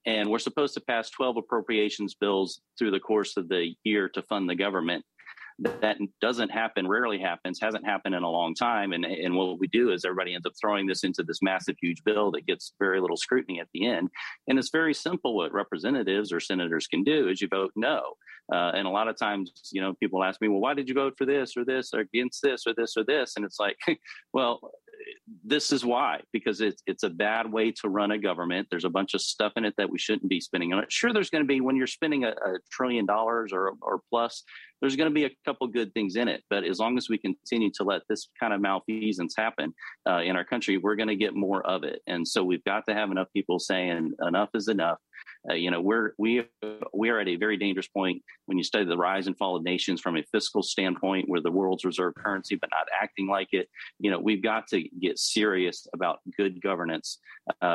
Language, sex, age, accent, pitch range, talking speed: English, male, 40-59, American, 95-125 Hz, 245 wpm